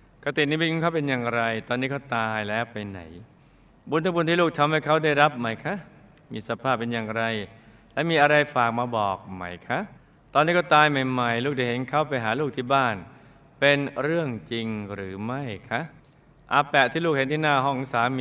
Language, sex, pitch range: Thai, male, 110-145 Hz